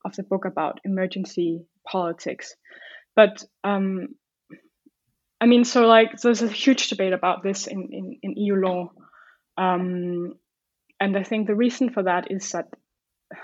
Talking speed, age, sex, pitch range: 150 wpm, 20-39, female, 185-225 Hz